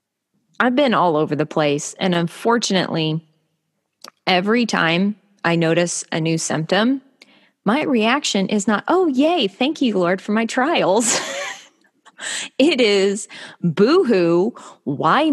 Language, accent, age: English, American, 20-39